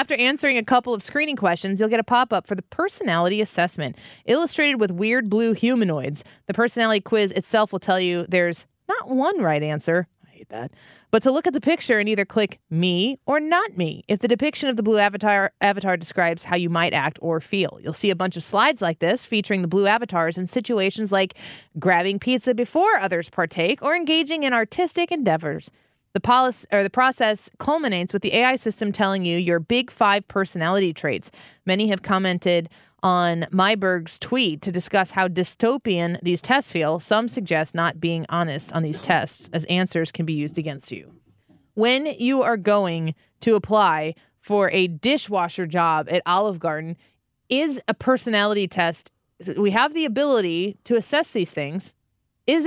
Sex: female